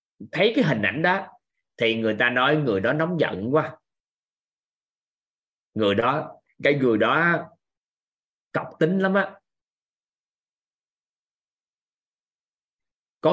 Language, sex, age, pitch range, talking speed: Vietnamese, male, 20-39, 115-165 Hz, 110 wpm